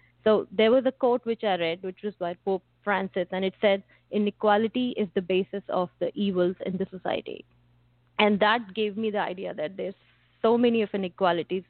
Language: English